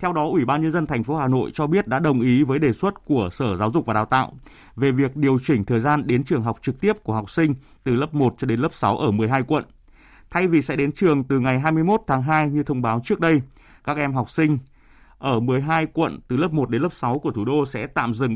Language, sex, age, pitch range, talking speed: Vietnamese, male, 20-39, 115-150 Hz, 270 wpm